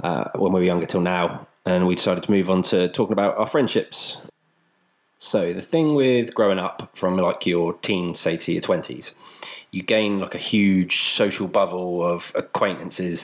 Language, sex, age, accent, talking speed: English, male, 20-39, British, 185 wpm